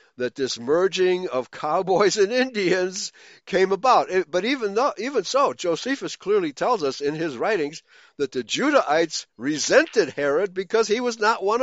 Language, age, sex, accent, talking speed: English, 60-79, male, American, 160 wpm